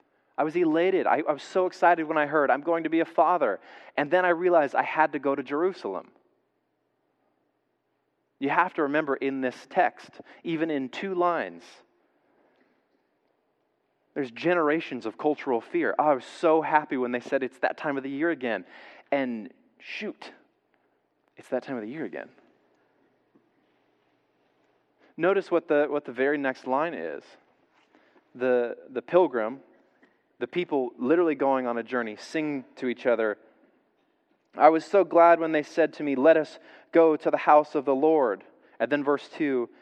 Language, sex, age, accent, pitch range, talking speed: English, male, 30-49, American, 130-165 Hz, 170 wpm